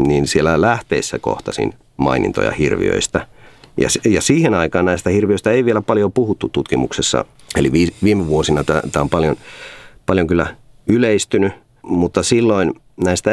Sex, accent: male, native